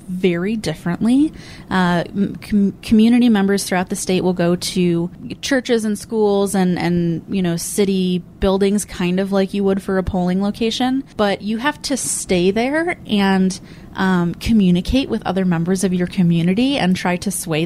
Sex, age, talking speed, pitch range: female, 20-39, 165 wpm, 175-215 Hz